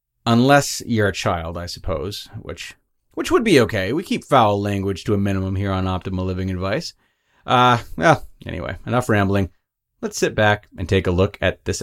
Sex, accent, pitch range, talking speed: male, American, 95-115 Hz, 195 wpm